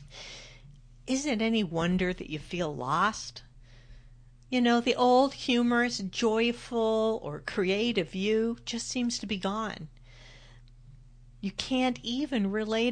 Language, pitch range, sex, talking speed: English, 150-225 Hz, female, 120 wpm